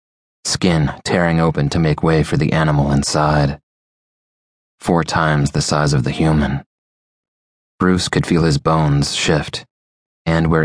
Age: 30-49